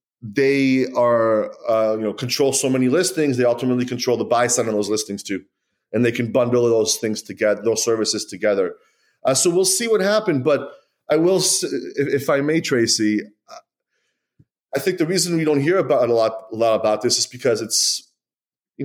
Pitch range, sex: 120-150 Hz, male